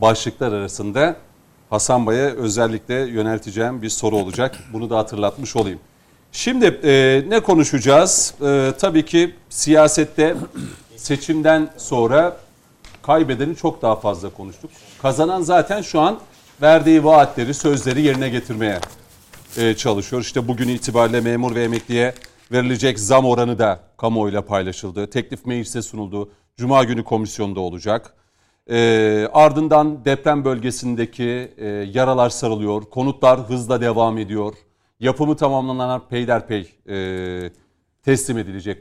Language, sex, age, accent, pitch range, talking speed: Turkish, male, 40-59, native, 105-140 Hz, 115 wpm